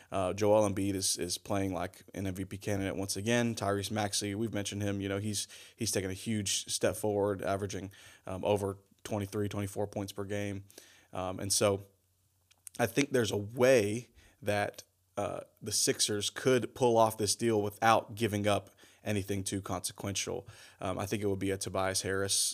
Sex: male